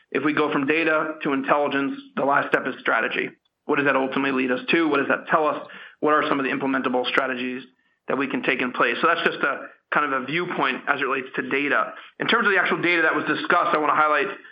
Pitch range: 135-155 Hz